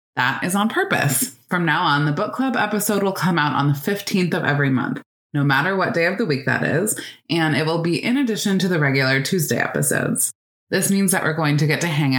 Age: 20-39